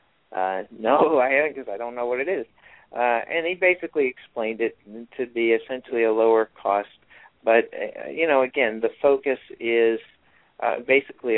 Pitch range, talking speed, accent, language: 110-130 Hz, 175 wpm, American, English